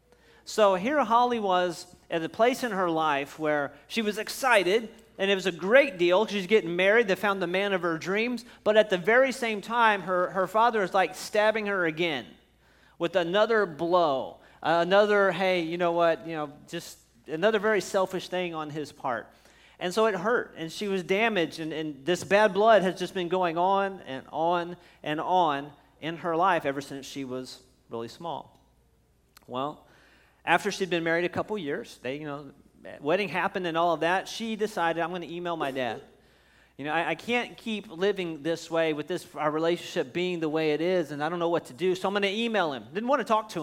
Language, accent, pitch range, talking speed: English, American, 165-220 Hz, 210 wpm